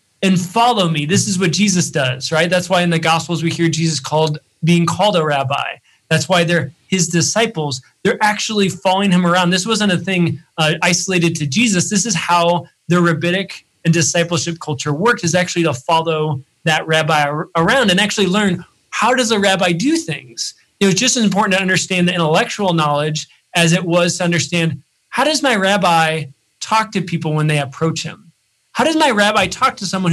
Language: English